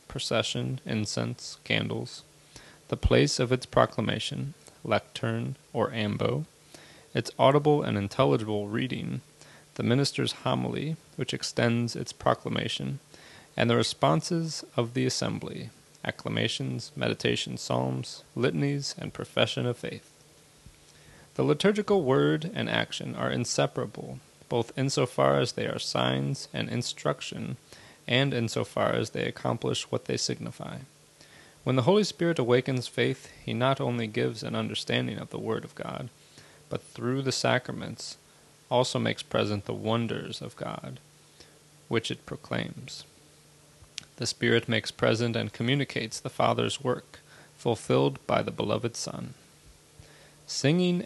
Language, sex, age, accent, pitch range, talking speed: English, male, 30-49, American, 110-140 Hz, 125 wpm